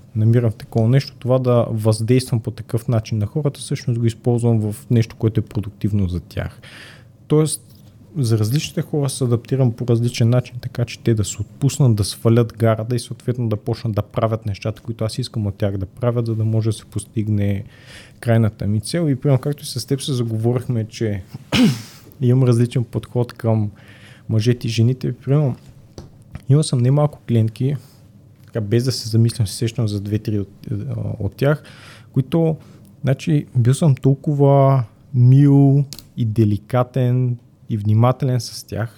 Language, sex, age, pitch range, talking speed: Bulgarian, male, 30-49, 110-130 Hz, 170 wpm